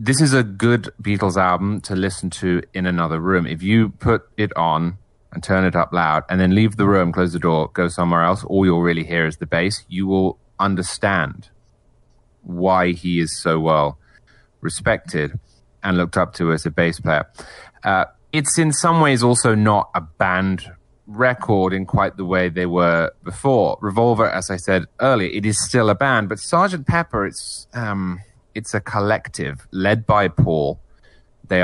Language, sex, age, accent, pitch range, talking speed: English, male, 30-49, British, 85-110 Hz, 180 wpm